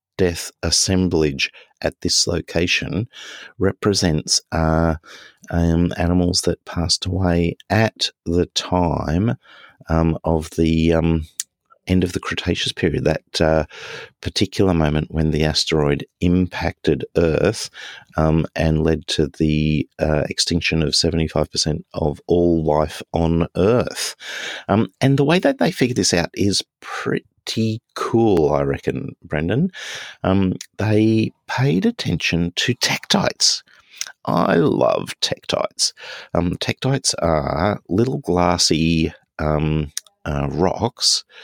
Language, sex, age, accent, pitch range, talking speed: English, male, 50-69, Australian, 75-90 Hz, 115 wpm